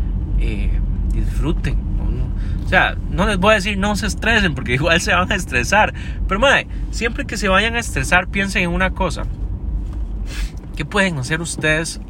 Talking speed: 175 wpm